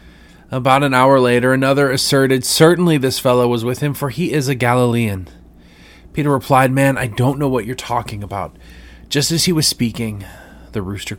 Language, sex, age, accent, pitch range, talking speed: English, male, 30-49, American, 95-130 Hz, 180 wpm